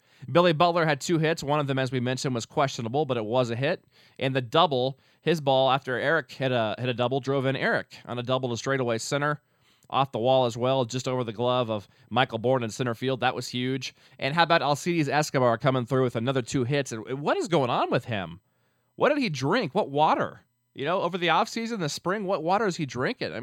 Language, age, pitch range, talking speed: English, 20-39, 115-145 Hz, 235 wpm